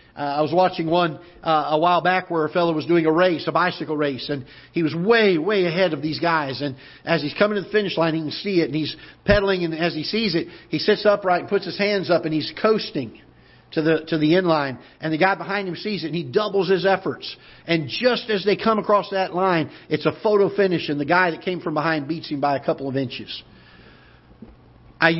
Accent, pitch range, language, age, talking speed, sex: American, 150-185 Hz, English, 50-69, 245 wpm, male